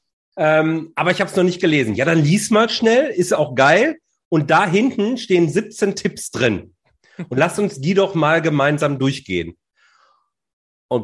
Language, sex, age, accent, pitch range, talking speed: German, male, 30-49, German, 140-195 Hz, 175 wpm